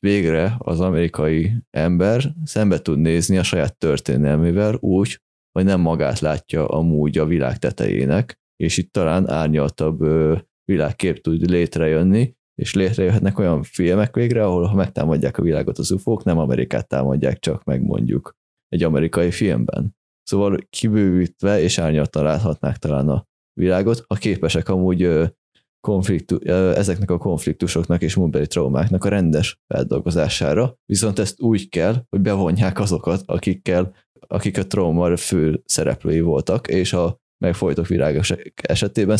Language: Hungarian